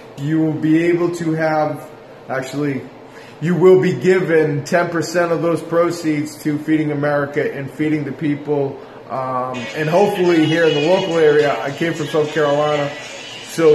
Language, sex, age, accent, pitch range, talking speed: English, male, 20-39, American, 140-165 Hz, 155 wpm